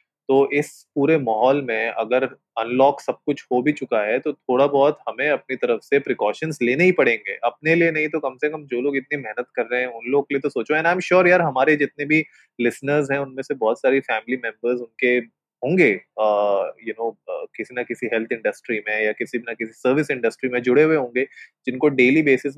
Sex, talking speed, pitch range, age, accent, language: male, 195 wpm, 125-160 Hz, 20-39, native, Hindi